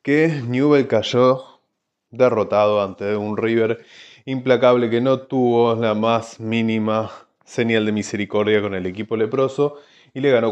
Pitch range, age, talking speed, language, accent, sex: 115-170 Hz, 20-39, 135 wpm, Spanish, Argentinian, male